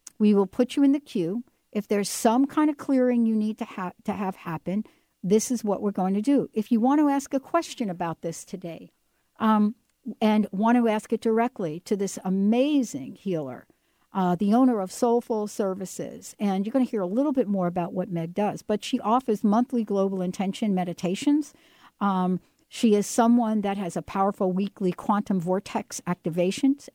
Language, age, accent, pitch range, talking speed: English, 60-79, American, 195-275 Hz, 190 wpm